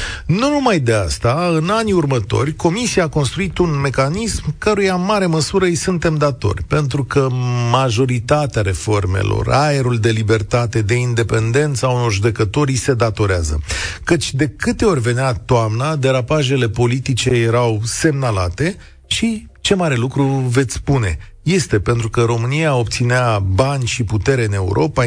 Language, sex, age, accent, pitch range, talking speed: Romanian, male, 40-59, native, 110-155 Hz, 140 wpm